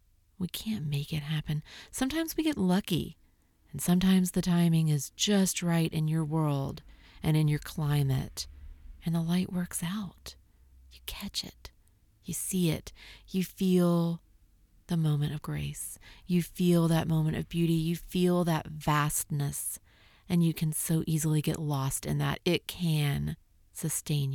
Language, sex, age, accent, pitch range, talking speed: English, female, 40-59, American, 140-175 Hz, 155 wpm